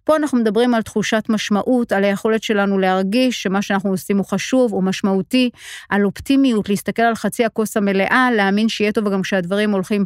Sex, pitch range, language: female, 205-250 Hz, Hebrew